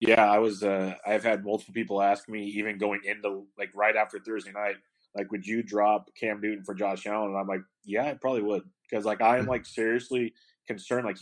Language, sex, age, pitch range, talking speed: English, male, 30-49, 100-120 Hz, 220 wpm